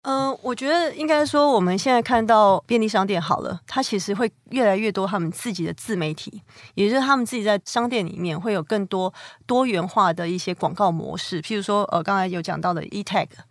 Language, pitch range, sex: Chinese, 175-220 Hz, female